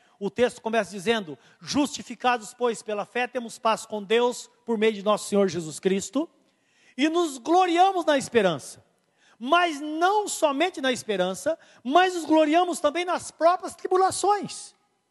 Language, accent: Portuguese, Brazilian